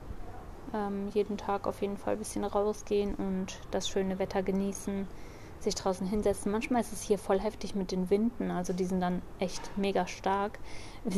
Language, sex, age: German, female, 20-39